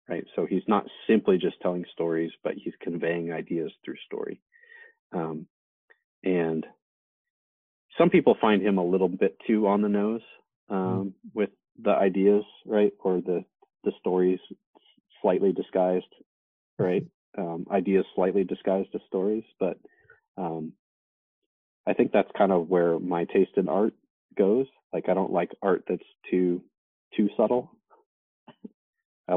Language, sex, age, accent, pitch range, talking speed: English, male, 30-49, American, 90-110 Hz, 140 wpm